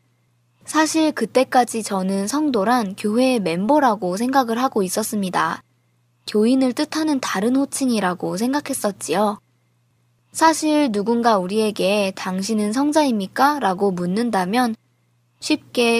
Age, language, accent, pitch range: 20-39, Korean, native, 185-250 Hz